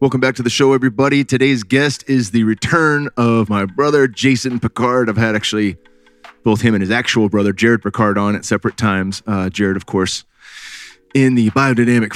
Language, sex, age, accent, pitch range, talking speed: English, male, 30-49, American, 100-120 Hz, 190 wpm